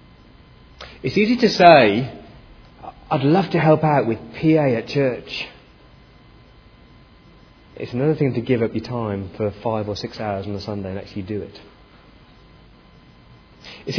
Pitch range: 105-150 Hz